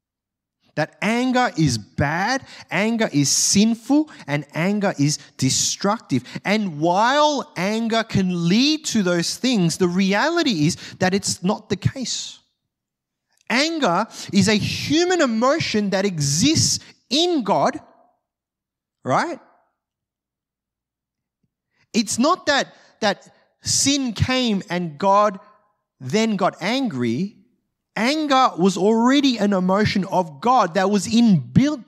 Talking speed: 110 wpm